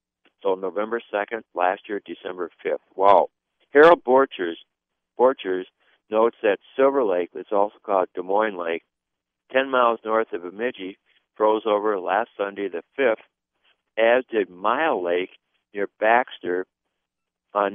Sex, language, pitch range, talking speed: male, English, 95-120 Hz, 130 wpm